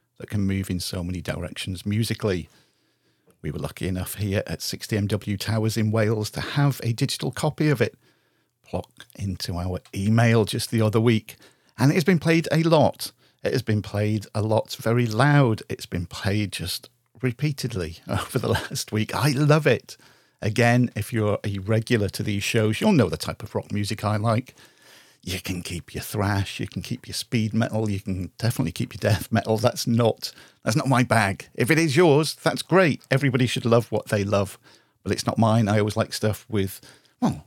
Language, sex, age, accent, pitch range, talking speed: English, male, 50-69, British, 100-125 Hz, 195 wpm